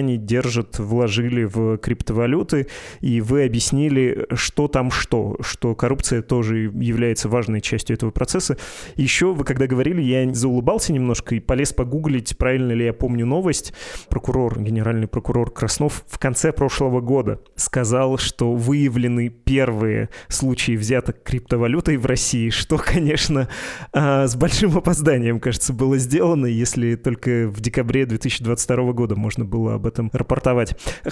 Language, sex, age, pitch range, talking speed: Russian, male, 20-39, 115-135 Hz, 135 wpm